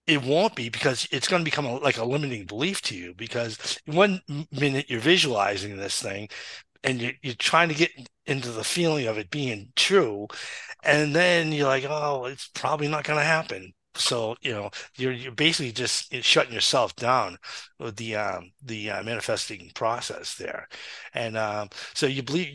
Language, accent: English, American